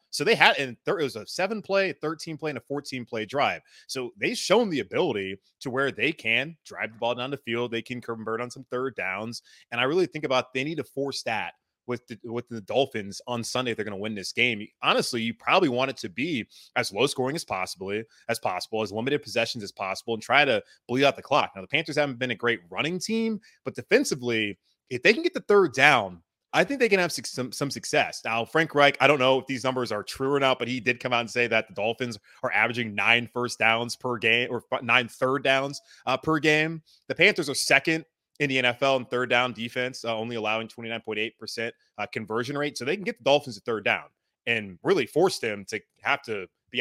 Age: 20-39